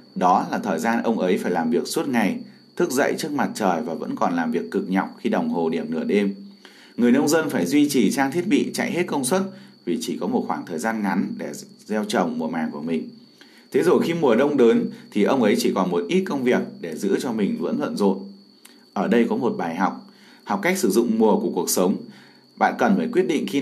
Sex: male